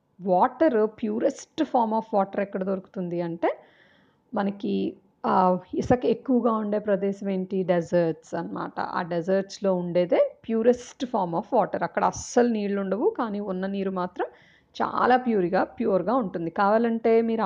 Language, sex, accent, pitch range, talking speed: Telugu, female, native, 180-225 Hz, 125 wpm